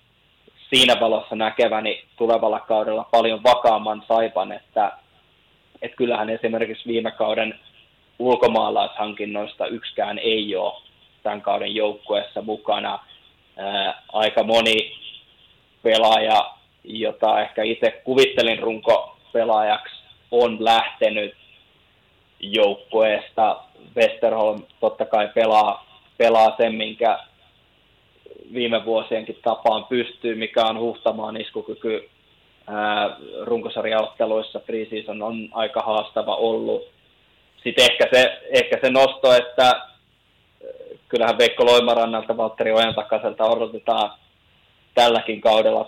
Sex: male